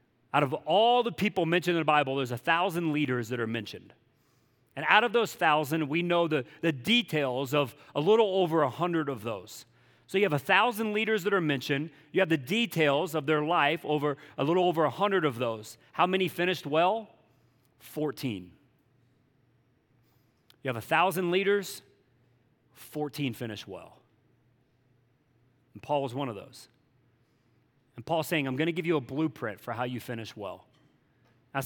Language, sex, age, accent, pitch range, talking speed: English, male, 40-59, American, 125-170 Hz, 170 wpm